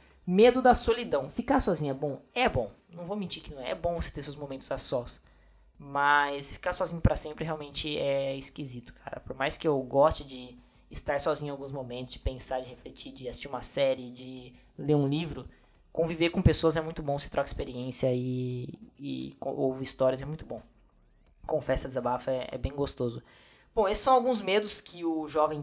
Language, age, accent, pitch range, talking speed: Portuguese, 20-39, Brazilian, 130-165 Hz, 200 wpm